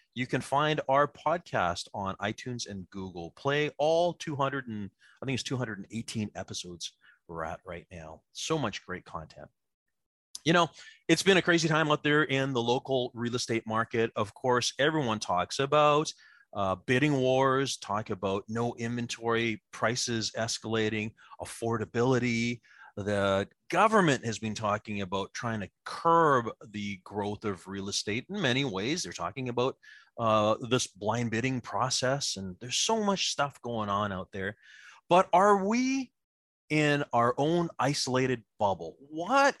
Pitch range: 105-150 Hz